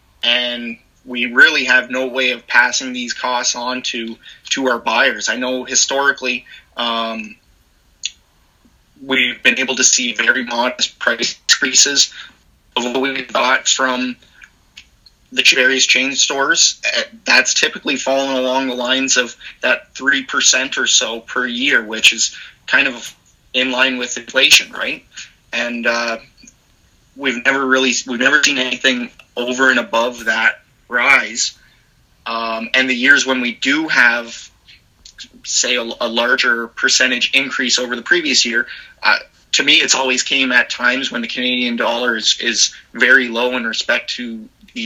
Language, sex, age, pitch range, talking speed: English, male, 30-49, 120-135 Hz, 150 wpm